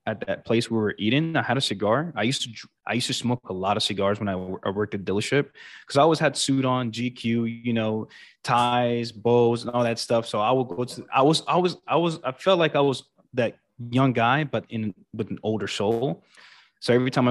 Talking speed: 250 wpm